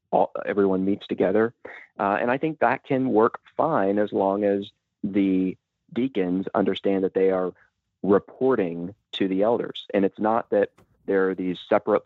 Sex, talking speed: male, 165 wpm